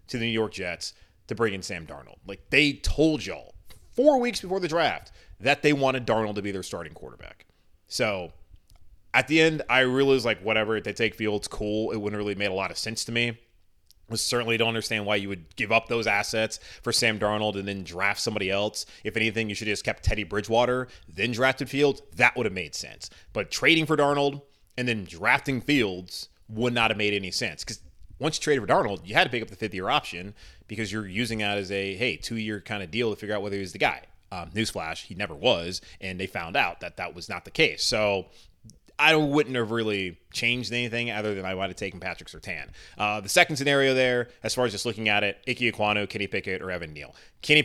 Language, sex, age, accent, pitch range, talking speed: English, male, 30-49, American, 95-120 Hz, 235 wpm